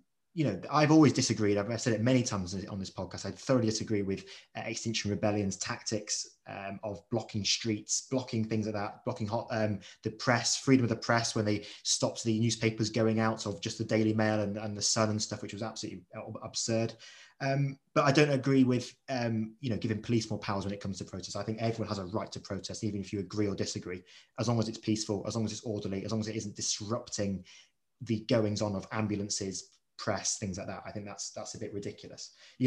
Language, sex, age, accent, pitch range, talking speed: English, male, 20-39, British, 105-120 Hz, 230 wpm